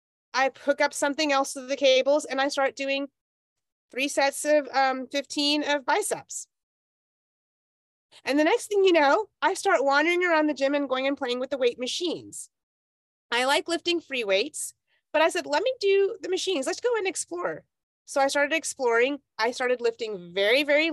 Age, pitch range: 30-49, 240-340 Hz